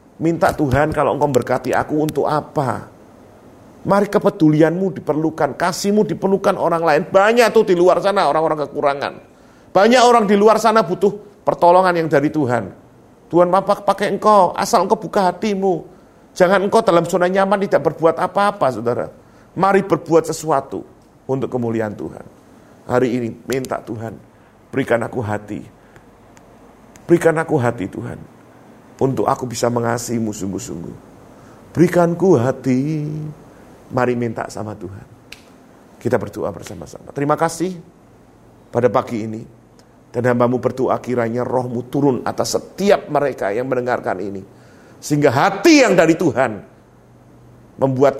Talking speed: 130 wpm